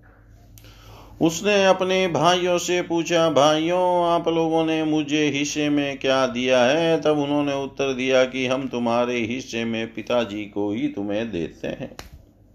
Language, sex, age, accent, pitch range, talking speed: Hindi, male, 50-69, native, 110-145 Hz, 145 wpm